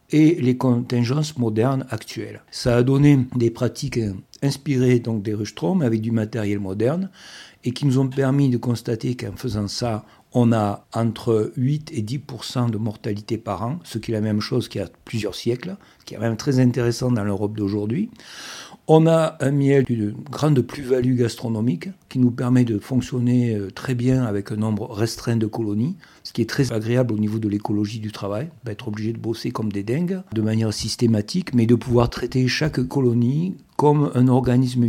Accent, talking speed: French, 185 wpm